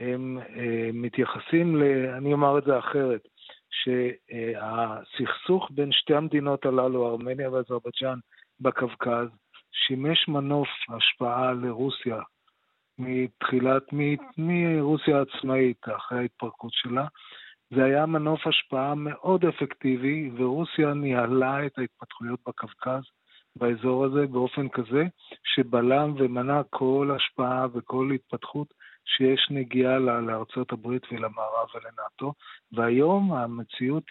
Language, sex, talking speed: Hebrew, male, 100 wpm